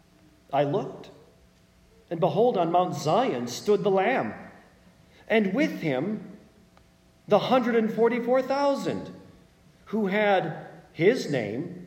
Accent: American